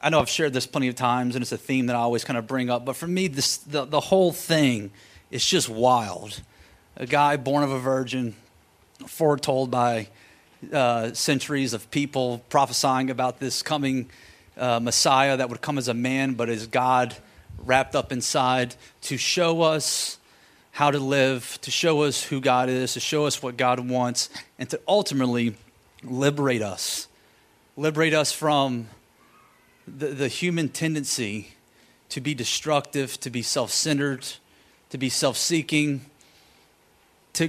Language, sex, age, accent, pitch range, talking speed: English, male, 30-49, American, 125-150 Hz, 160 wpm